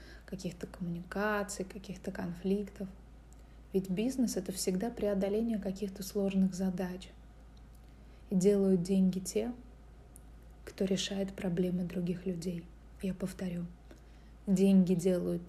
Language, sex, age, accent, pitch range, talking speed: Russian, female, 20-39, native, 180-200 Hz, 95 wpm